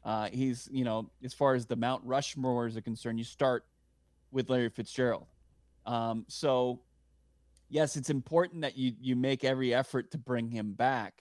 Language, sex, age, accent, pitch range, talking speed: English, male, 20-39, American, 115-135 Hz, 175 wpm